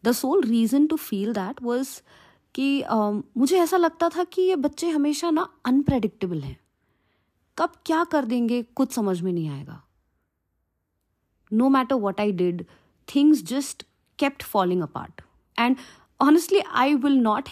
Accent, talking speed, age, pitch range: native, 150 wpm, 30-49, 170-265 Hz